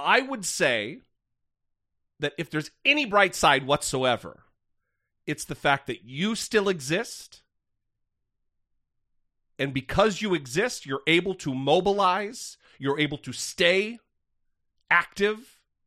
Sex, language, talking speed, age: male, English, 115 wpm, 40-59